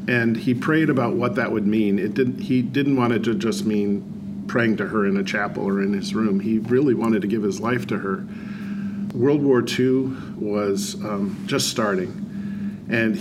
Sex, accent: male, American